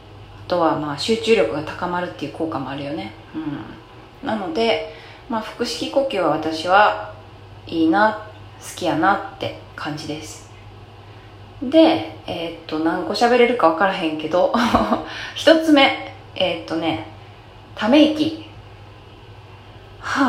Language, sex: Japanese, female